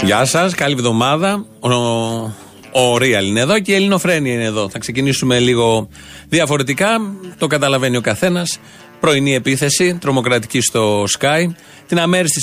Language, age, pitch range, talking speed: Greek, 30-49, 115-150 Hz, 135 wpm